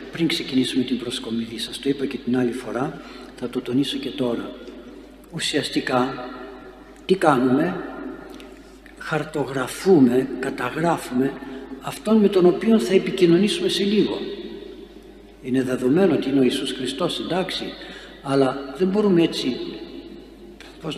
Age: 60-79